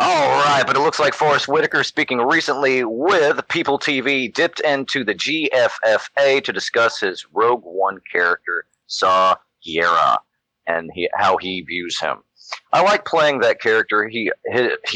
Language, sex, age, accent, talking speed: English, male, 40-59, American, 155 wpm